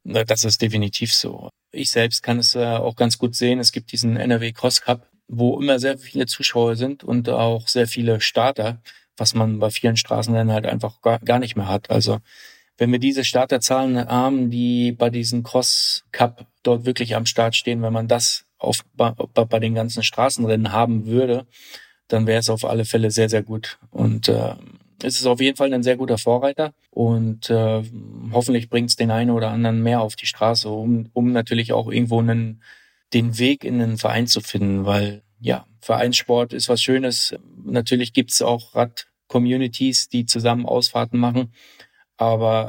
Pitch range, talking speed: 115-120 Hz, 185 wpm